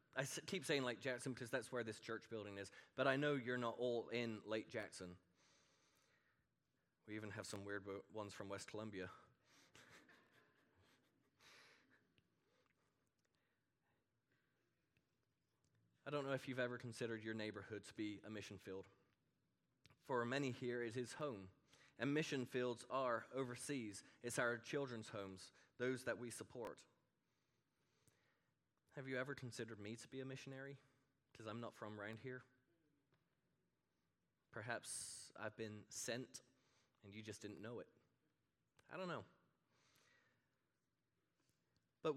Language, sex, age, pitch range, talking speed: English, male, 20-39, 110-135 Hz, 130 wpm